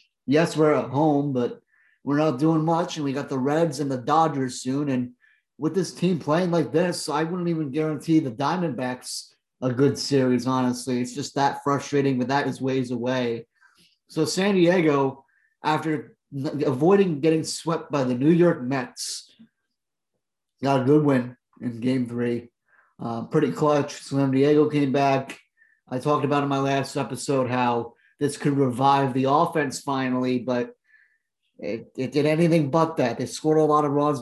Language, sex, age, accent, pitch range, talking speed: English, male, 30-49, American, 130-150 Hz, 170 wpm